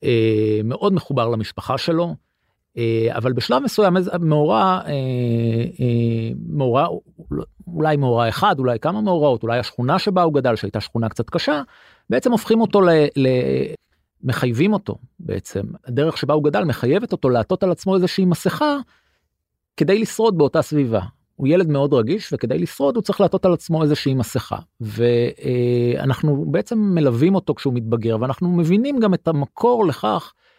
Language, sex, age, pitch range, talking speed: Hebrew, male, 40-59, 120-185 Hz, 140 wpm